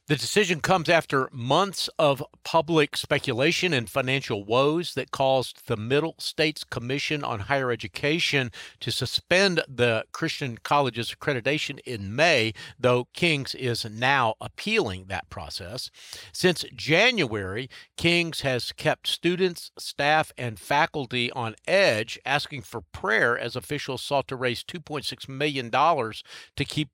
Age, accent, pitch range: 50-69, American, 120-150 Hz